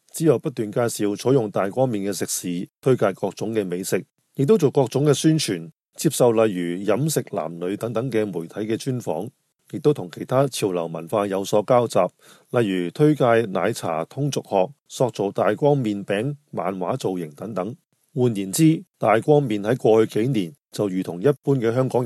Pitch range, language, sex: 100-135 Hz, Chinese, male